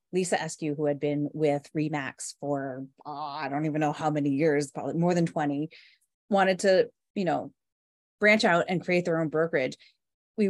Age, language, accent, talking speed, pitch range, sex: 30-49, English, American, 175 wpm, 155-210 Hz, female